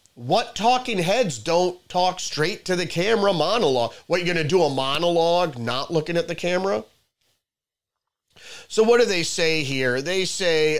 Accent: American